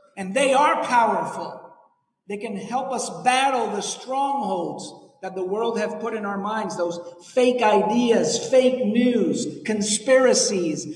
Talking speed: 135 wpm